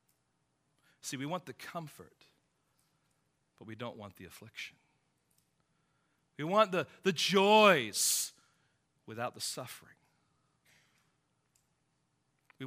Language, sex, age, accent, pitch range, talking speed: English, male, 40-59, American, 115-150 Hz, 95 wpm